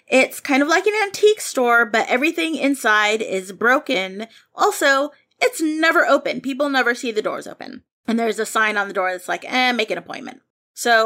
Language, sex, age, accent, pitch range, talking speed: English, female, 30-49, American, 190-270 Hz, 195 wpm